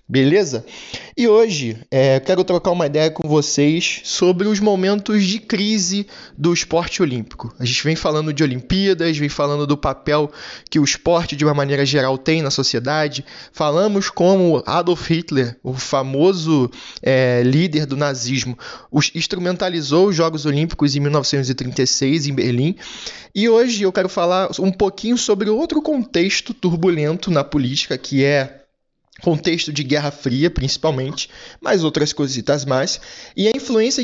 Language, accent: Portuguese, Brazilian